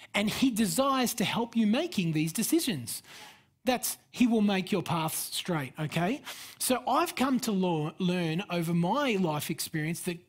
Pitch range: 170-230 Hz